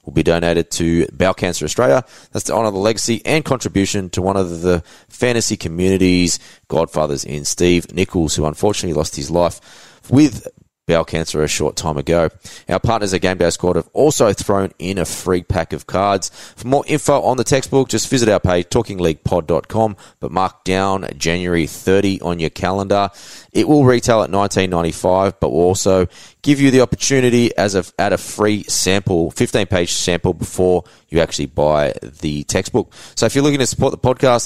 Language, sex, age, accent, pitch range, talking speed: English, male, 20-39, Australian, 85-110 Hz, 180 wpm